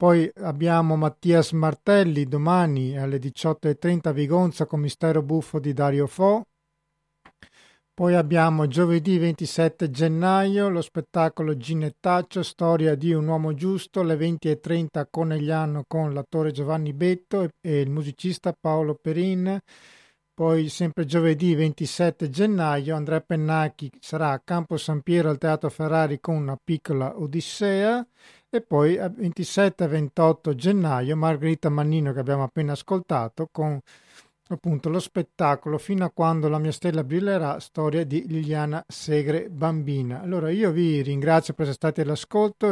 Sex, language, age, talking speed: male, Italian, 50-69, 135 wpm